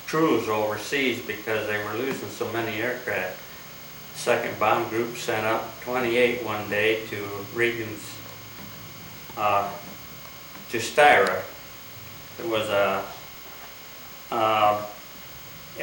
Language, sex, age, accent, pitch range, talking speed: English, male, 60-79, American, 105-120 Hz, 100 wpm